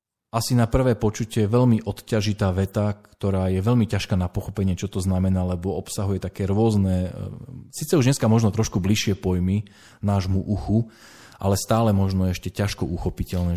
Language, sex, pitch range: Slovak, male, 95-115 Hz